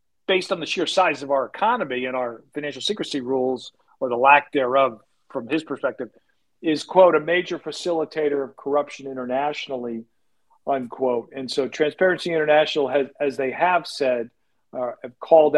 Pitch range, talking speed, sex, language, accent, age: 130-155 Hz, 160 wpm, male, English, American, 50-69